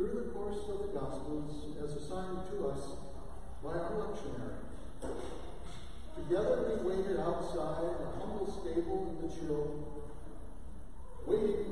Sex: male